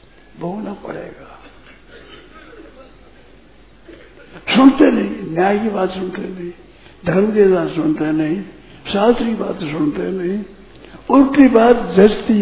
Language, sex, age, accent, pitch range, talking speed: Hindi, male, 60-79, native, 180-235 Hz, 105 wpm